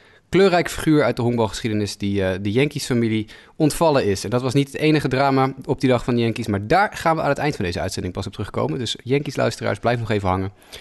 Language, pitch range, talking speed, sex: Dutch, 105-135 Hz, 240 wpm, male